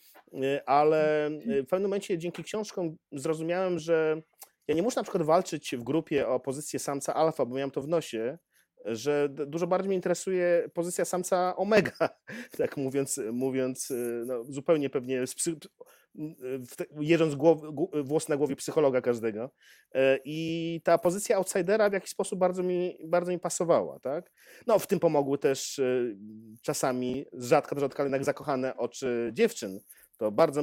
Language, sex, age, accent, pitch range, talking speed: Polish, male, 30-49, native, 130-170 Hz, 145 wpm